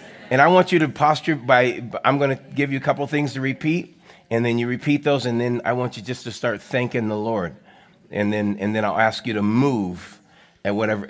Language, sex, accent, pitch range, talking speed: English, male, American, 115-150 Hz, 245 wpm